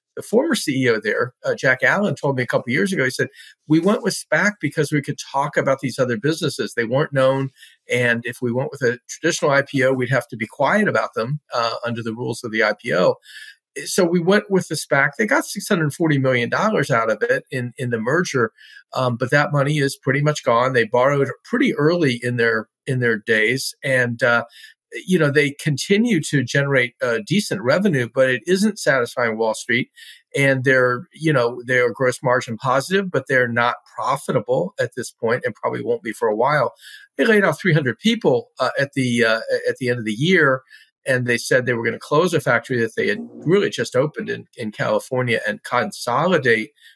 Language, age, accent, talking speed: English, 50-69, American, 205 wpm